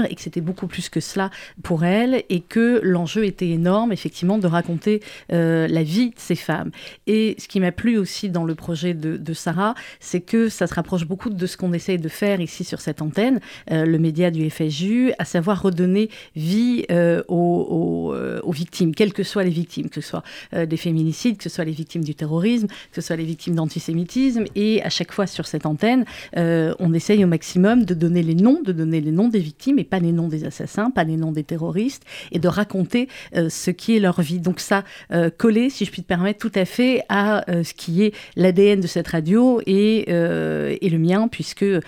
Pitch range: 170-210 Hz